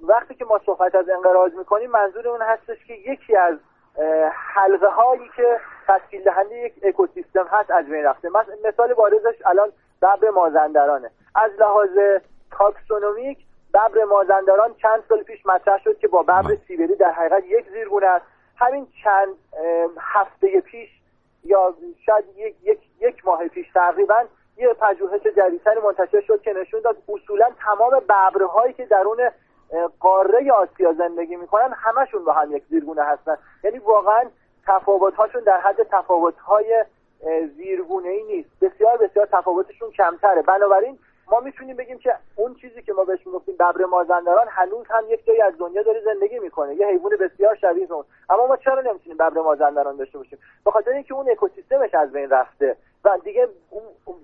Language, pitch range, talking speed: Persian, 185-255 Hz, 155 wpm